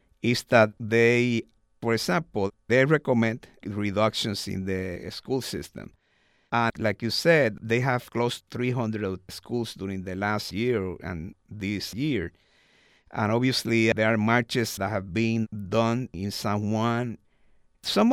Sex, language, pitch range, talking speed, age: male, English, 100-125 Hz, 135 wpm, 50-69